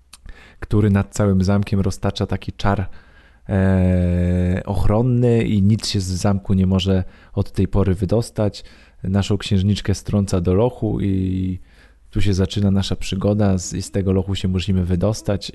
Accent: native